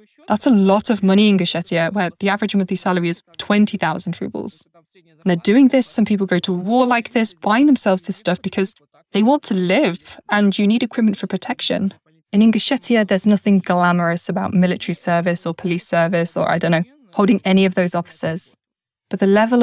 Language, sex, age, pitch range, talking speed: English, female, 20-39, 180-210 Hz, 195 wpm